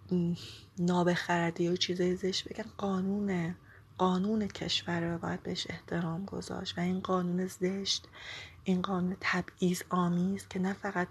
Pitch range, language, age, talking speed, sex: 175-190 Hz, Persian, 20-39, 130 wpm, female